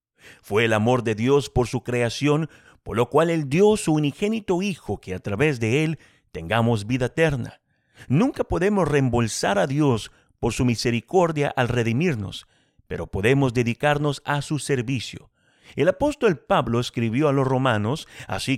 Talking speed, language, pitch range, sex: 155 wpm, Spanish, 115-155 Hz, male